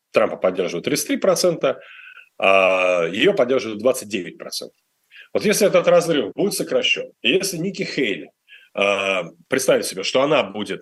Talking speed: 115 wpm